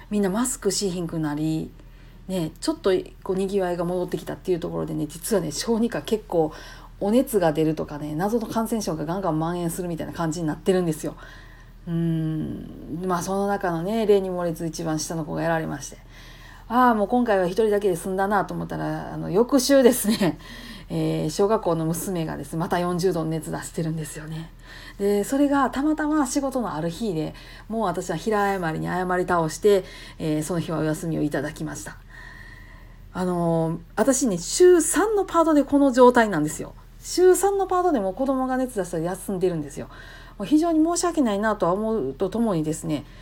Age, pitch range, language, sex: 40-59, 165-235 Hz, Japanese, female